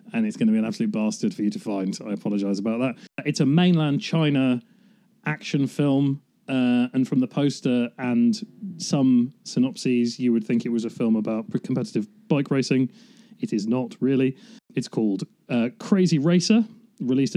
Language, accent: English, British